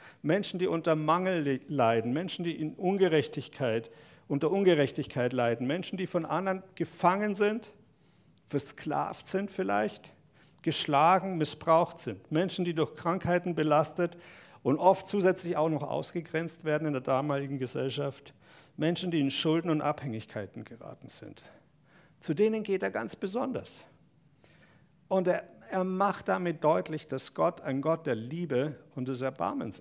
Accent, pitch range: German, 135-175 Hz